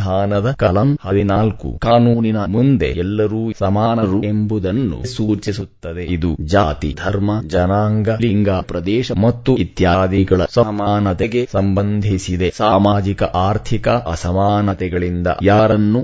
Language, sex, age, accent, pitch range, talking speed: English, male, 30-49, Indian, 90-110 Hz, 105 wpm